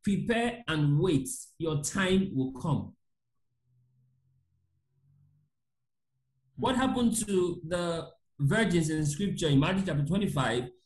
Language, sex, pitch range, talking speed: English, male, 155-230 Hz, 105 wpm